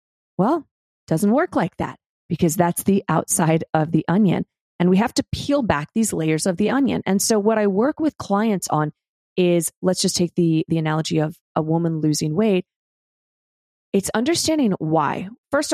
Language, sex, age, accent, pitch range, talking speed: English, female, 30-49, American, 165-225 Hz, 185 wpm